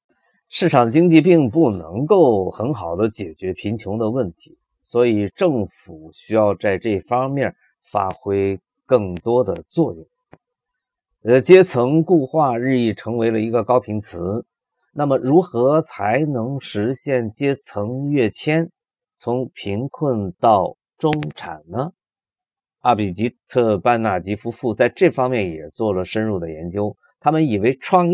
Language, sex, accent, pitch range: Chinese, male, native, 100-145 Hz